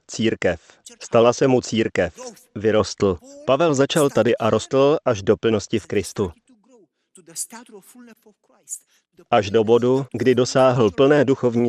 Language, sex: Slovak, male